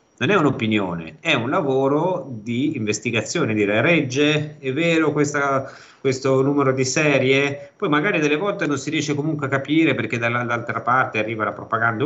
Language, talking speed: Italian, 170 wpm